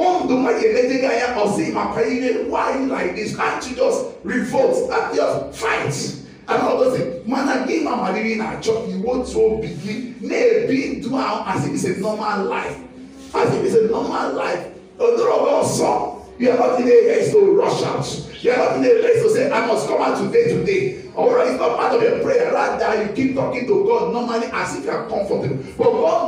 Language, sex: English, male